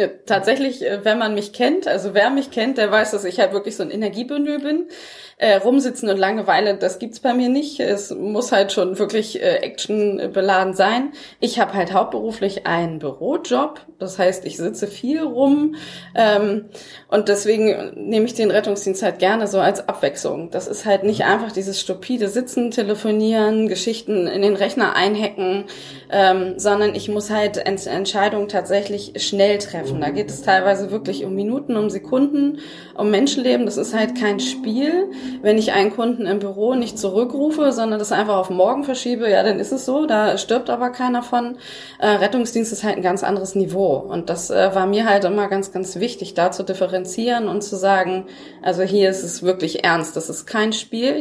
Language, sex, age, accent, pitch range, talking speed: German, female, 20-39, German, 195-245 Hz, 185 wpm